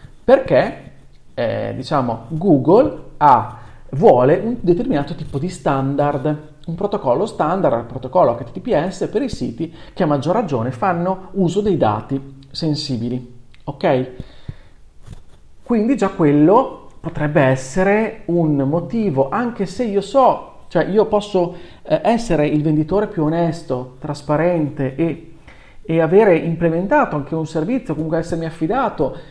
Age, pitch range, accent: 40-59, 135-180 Hz, native